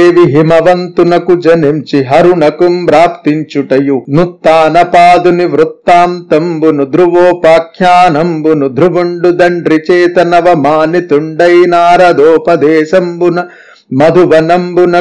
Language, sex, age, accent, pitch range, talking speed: Telugu, male, 50-69, native, 155-175 Hz, 45 wpm